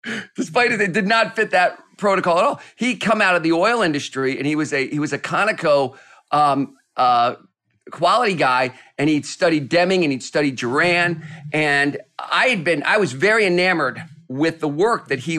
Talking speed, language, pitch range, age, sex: 195 wpm, English, 140-180 Hz, 40-59, male